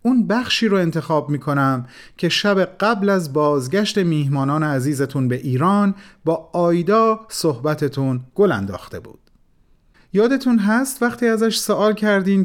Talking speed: 125 wpm